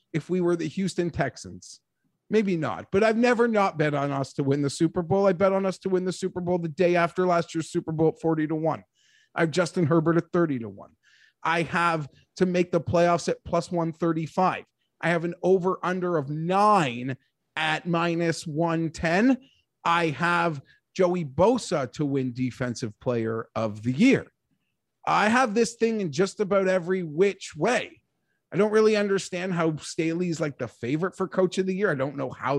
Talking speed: 195 wpm